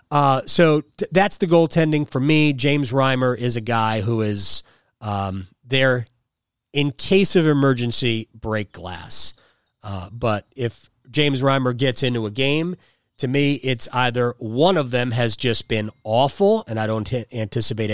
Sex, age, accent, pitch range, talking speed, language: male, 30-49, American, 115-150 Hz, 155 wpm, English